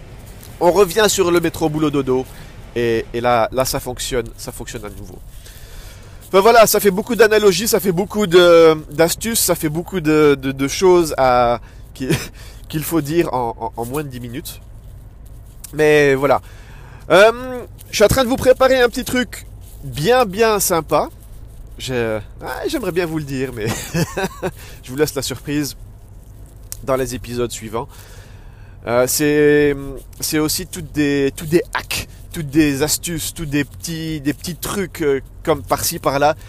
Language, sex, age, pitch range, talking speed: French, male, 30-49, 115-160 Hz, 150 wpm